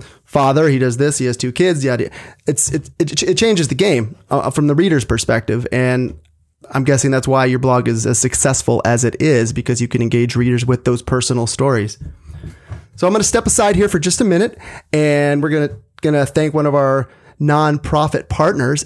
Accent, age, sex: American, 30-49, male